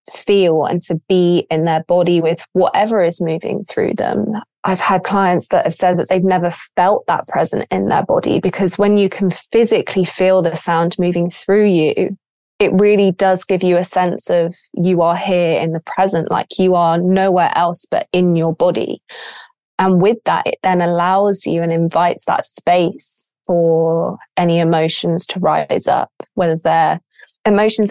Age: 20-39